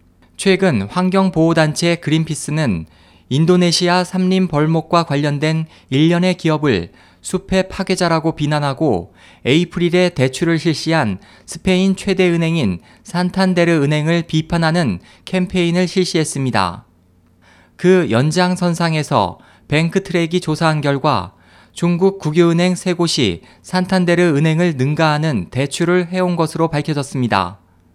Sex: male